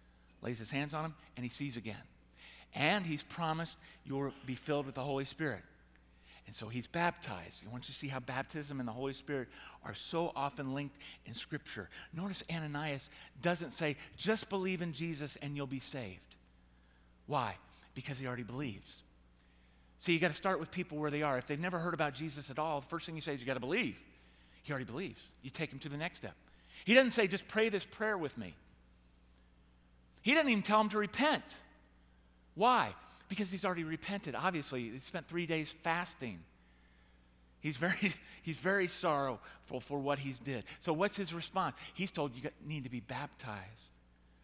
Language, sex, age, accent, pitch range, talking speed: English, male, 50-69, American, 110-165 Hz, 195 wpm